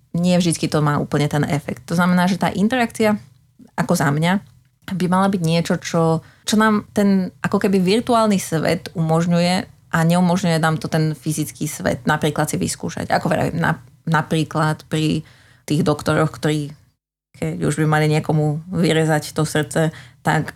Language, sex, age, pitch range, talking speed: Slovak, female, 20-39, 150-175 Hz, 155 wpm